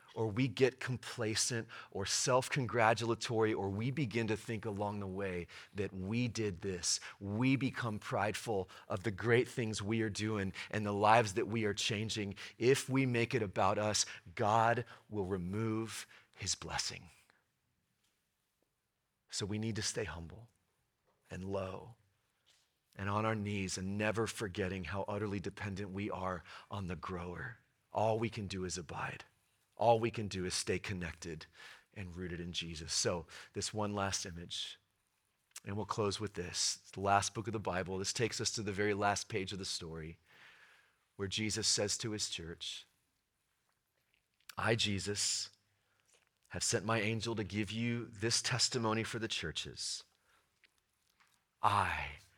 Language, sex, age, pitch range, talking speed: English, male, 30-49, 95-110 Hz, 155 wpm